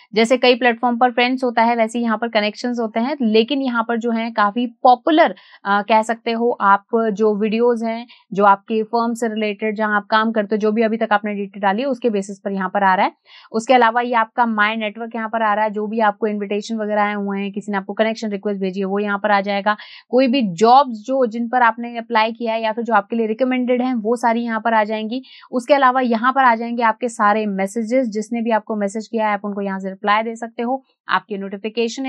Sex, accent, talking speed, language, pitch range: female, native, 250 wpm, Hindi, 215-250 Hz